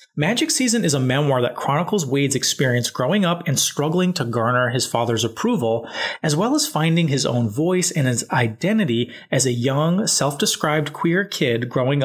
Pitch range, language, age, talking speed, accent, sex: 130-170 Hz, English, 30-49, 175 wpm, American, male